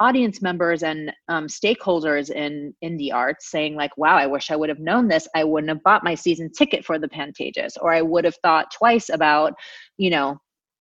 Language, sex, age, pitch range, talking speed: English, female, 30-49, 160-225 Hz, 210 wpm